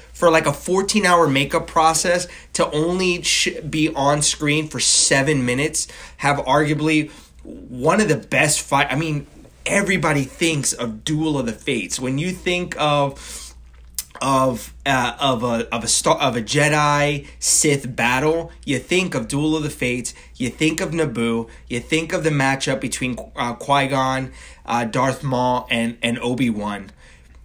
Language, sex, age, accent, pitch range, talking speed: English, male, 20-39, American, 130-190 Hz, 160 wpm